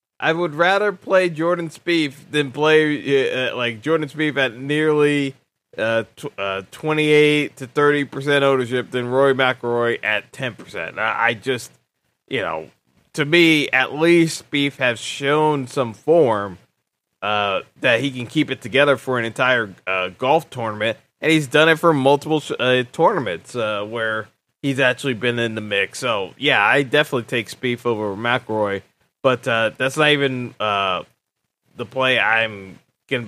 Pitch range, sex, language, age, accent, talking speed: 125-155 Hz, male, English, 20-39, American, 165 wpm